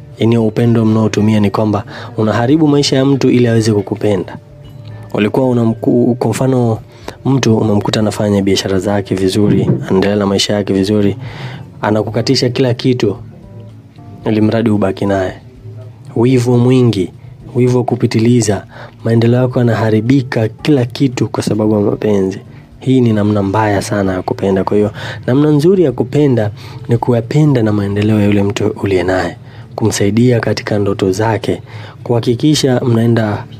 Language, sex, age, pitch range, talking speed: Swahili, male, 20-39, 105-125 Hz, 130 wpm